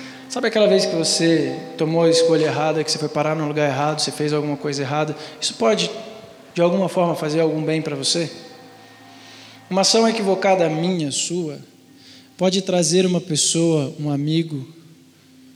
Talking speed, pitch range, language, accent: 160 wpm, 140-165 Hz, Portuguese, Brazilian